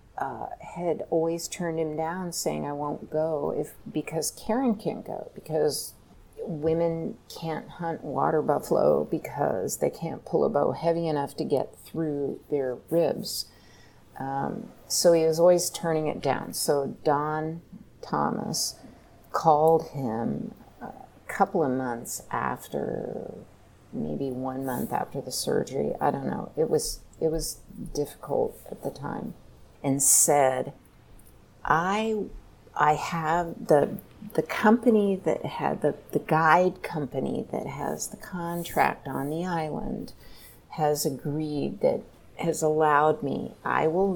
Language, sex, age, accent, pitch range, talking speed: English, female, 40-59, American, 145-170 Hz, 135 wpm